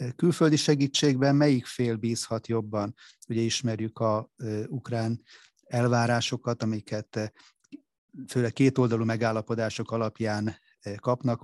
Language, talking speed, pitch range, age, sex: Hungarian, 90 wpm, 110-120 Hz, 30-49, male